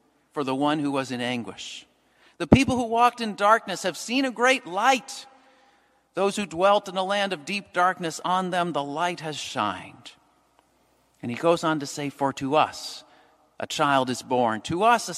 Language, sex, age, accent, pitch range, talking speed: English, male, 50-69, American, 155-215 Hz, 195 wpm